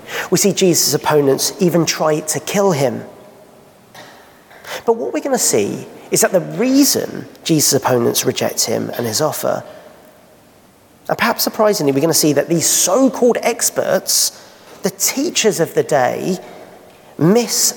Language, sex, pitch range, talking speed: English, male, 150-220 Hz, 145 wpm